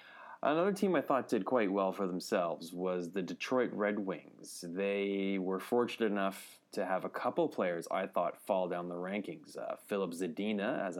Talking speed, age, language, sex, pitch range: 180 wpm, 20-39, English, male, 85-105 Hz